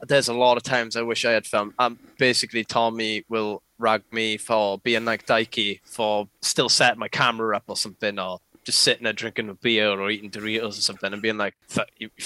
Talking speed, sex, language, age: 215 wpm, male, English, 10-29